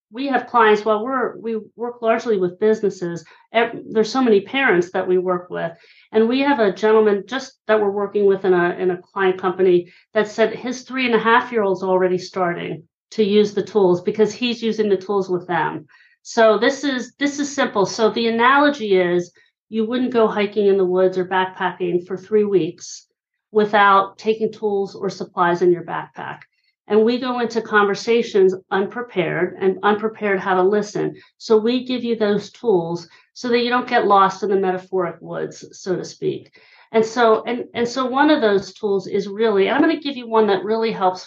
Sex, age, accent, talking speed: female, 40-59, American, 200 wpm